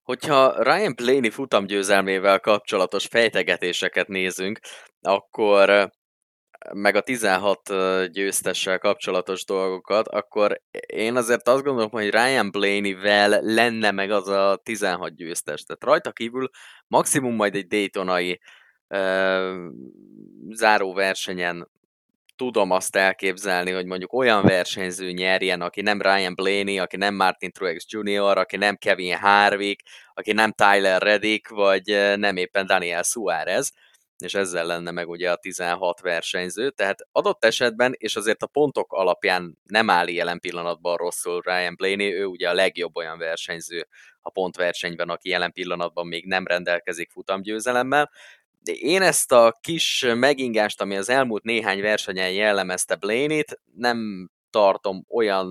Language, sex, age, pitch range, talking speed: Hungarian, male, 20-39, 90-110 Hz, 130 wpm